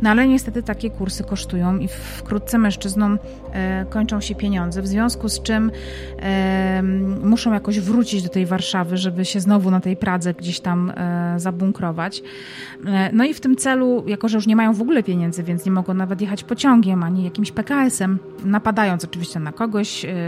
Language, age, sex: Polish, 30-49, female